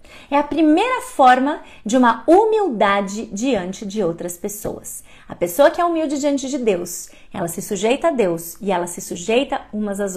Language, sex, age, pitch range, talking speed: Portuguese, female, 30-49, 235-330 Hz, 175 wpm